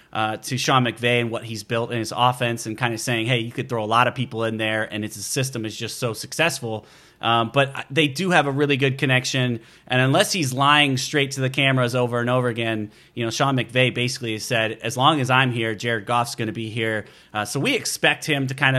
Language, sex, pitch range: English, male, 120-145 Hz